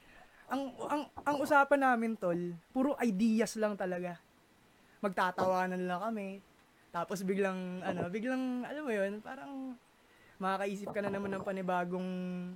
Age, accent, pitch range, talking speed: 20-39, native, 175-225 Hz, 130 wpm